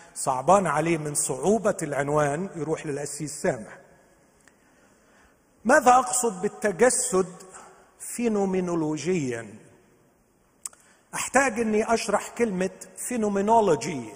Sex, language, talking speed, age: male, Arabic, 70 wpm, 50-69